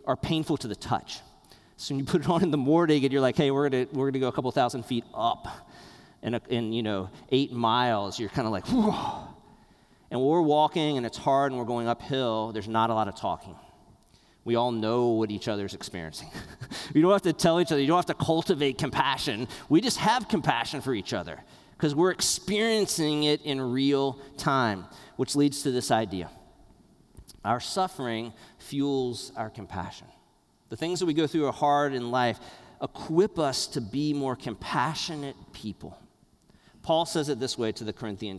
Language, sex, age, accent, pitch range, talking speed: English, male, 40-59, American, 115-150 Hz, 195 wpm